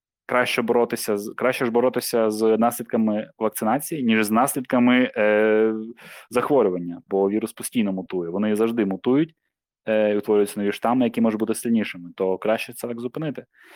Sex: male